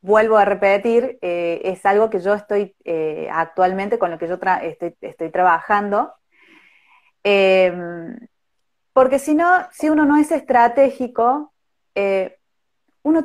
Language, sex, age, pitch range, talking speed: Spanish, female, 30-49, 190-255 Hz, 135 wpm